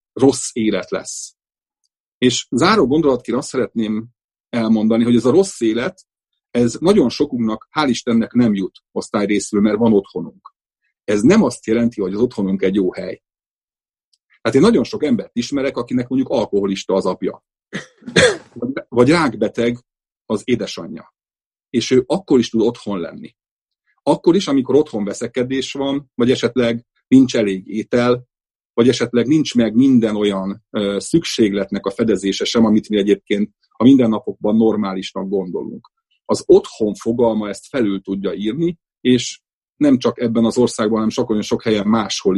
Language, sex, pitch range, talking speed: Hungarian, male, 110-130 Hz, 150 wpm